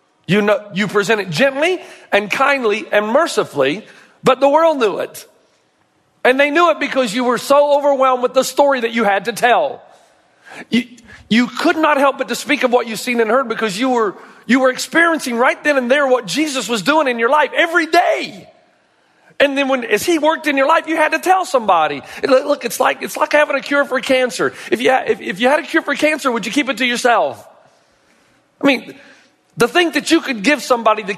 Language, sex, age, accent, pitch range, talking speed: English, male, 40-59, American, 220-285 Hz, 225 wpm